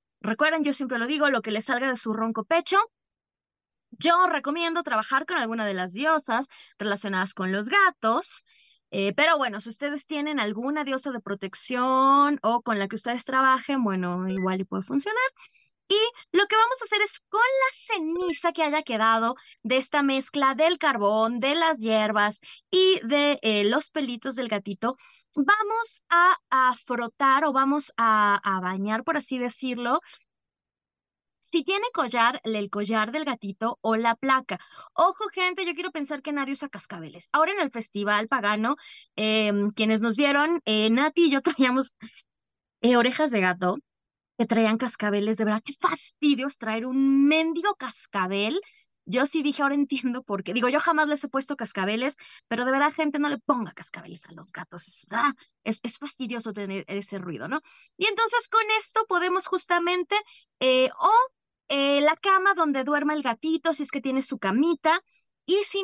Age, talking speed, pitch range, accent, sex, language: 20-39, 170 wpm, 225-325 Hz, Mexican, female, Spanish